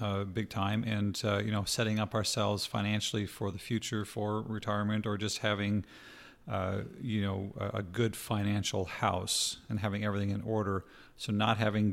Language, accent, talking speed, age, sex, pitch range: English, American, 175 wpm, 40-59, male, 100-115 Hz